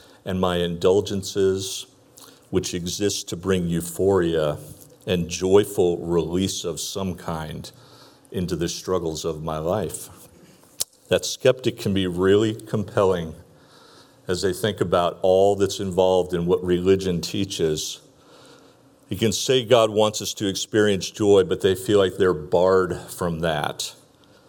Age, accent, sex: 50-69, American, male